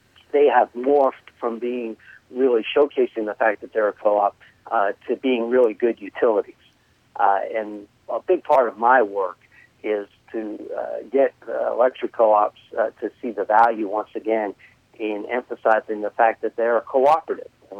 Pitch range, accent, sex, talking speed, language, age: 105-130 Hz, American, male, 165 wpm, English, 50-69